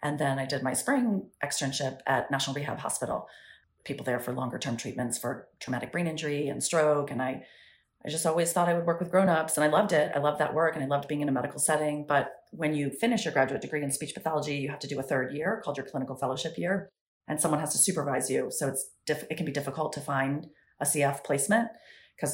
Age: 30-49